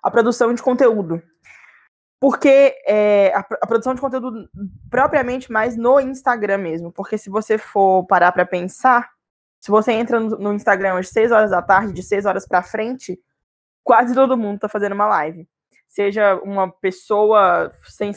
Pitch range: 190-240 Hz